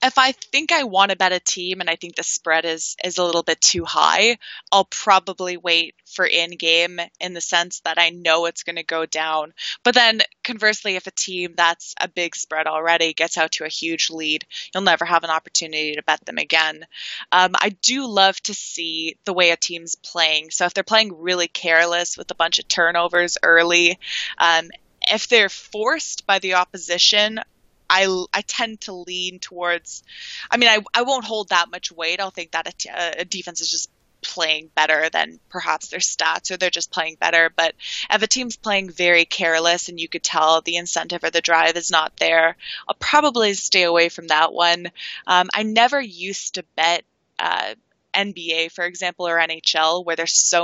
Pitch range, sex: 165-195 Hz, female